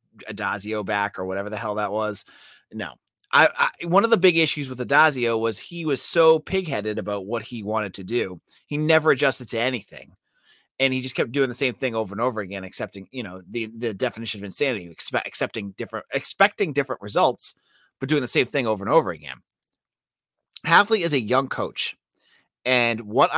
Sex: male